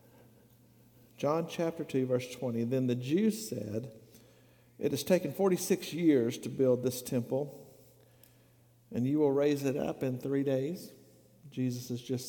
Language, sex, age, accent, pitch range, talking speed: English, male, 50-69, American, 120-145 Hz, 145 wpm